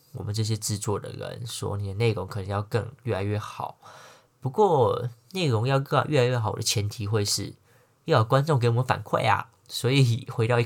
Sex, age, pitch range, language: male, 20-39, 110-130 Hz, Chinese